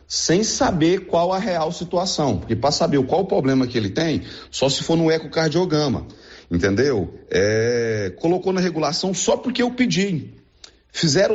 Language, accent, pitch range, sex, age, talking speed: Portuguese, Brazilian, 125-170 Hz, male, 40-59, 160 wpm